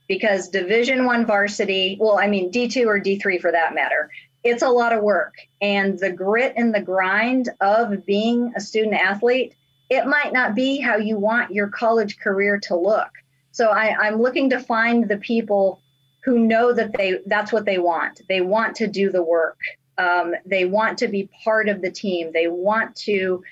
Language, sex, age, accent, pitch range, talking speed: English, female, 30-49, American, 190-230 Hz, 190 wpm